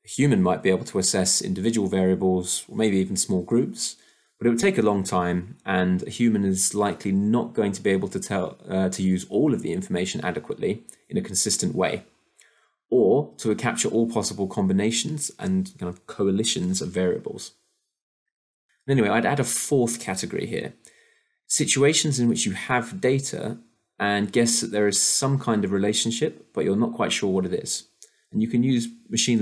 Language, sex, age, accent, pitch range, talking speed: English, male, 20-39, British, 95-120 Hz, 190 wpm